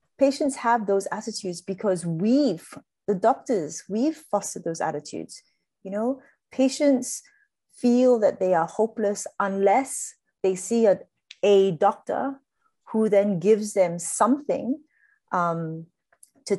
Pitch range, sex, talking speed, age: 175-245 Hz, female, 120 wpm, 30-49